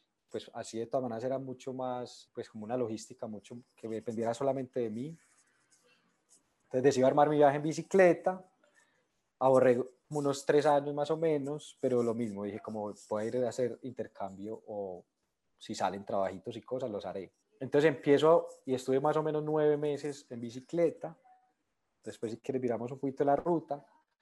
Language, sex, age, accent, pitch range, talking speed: Spanish, male, 20-39, Colombian, 115-145 Hz, 170 wpm